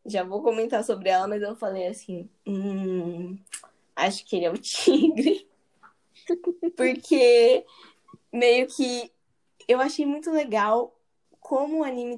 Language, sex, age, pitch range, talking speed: Portuguese, female, 10-29, 210-255 Hz, 130 wpm